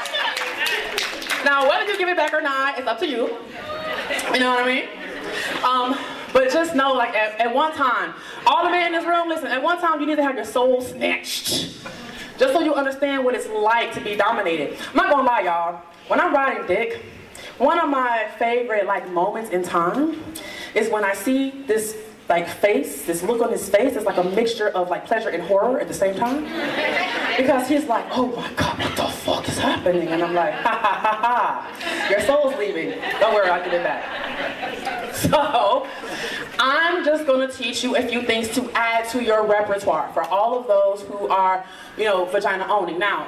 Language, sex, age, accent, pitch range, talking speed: English, female, 20-39, American, 215-280 Hz, 200 wpm